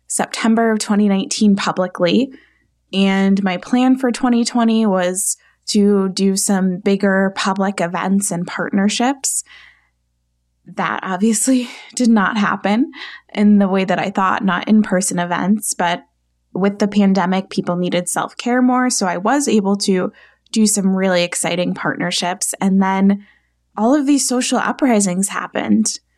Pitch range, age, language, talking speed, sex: 175-210 Hz, 20-39, English, 135 wpm, female